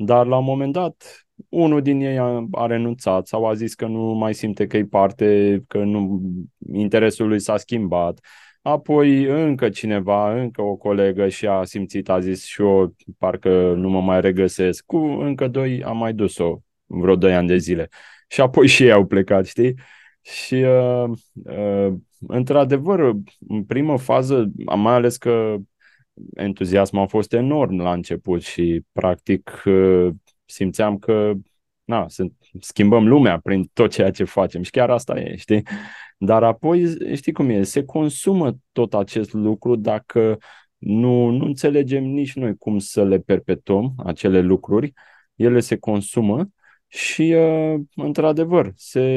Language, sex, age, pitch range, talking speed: Romanian, male, 20-39, 95-125 Hz, 150 wpm